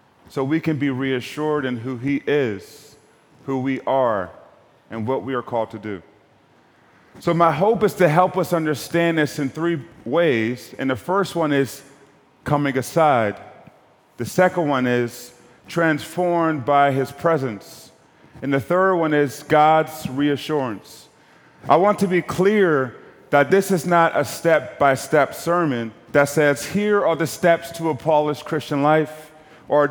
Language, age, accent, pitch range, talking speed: English, 30-49, American, 135-170 Hz, 155 wpm